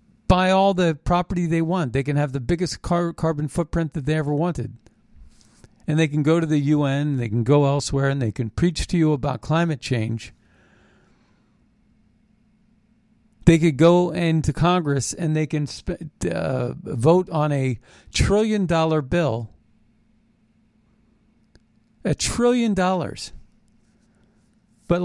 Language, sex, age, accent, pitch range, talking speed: English, male, 50-69, American, 135-175 Hz, 130 wpm